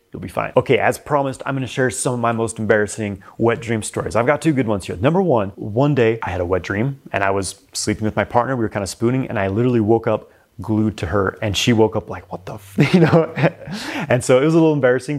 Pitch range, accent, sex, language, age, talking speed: 105-135 Hz, American, male, English, 30-49, 275 wpm